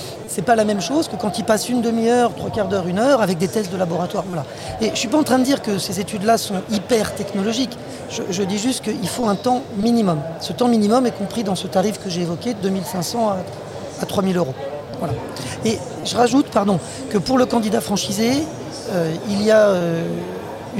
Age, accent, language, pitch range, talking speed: 40-59, French, French, 190-230 Hz, 225 wpm